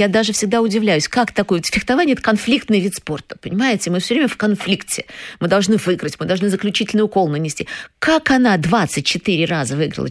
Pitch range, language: 155-220 Hz, Russian